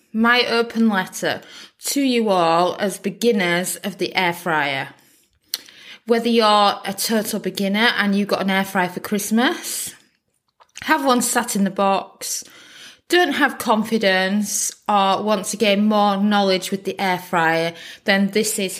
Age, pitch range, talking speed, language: 20-39, 190-230 Hz, 150 wpm, English